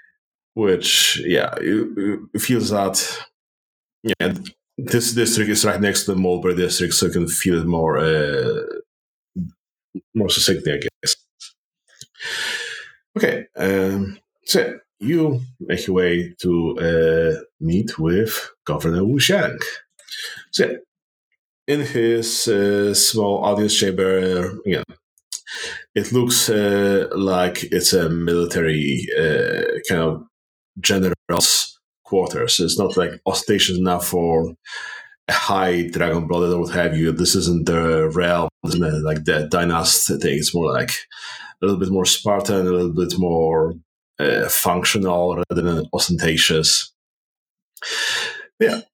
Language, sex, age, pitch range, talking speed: English, male, 30-49, 85-110 Hz, 125 wpm